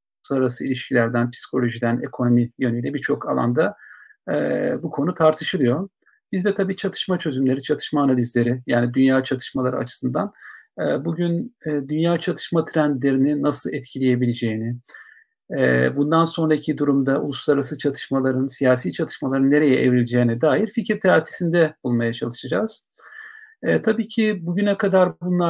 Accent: native